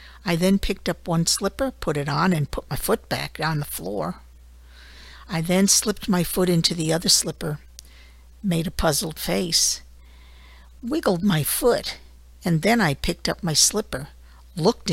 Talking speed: 165 wpm